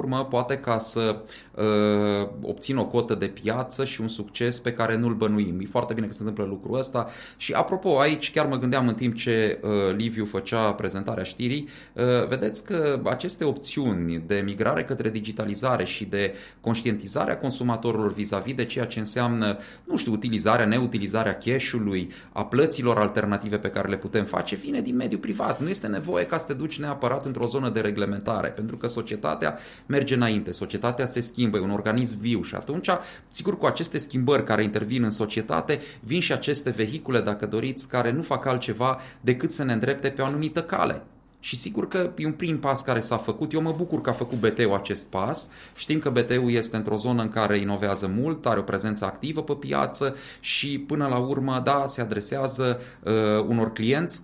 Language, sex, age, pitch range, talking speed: Romanian, male, 30-49, 105-135 Hz, 190 wpm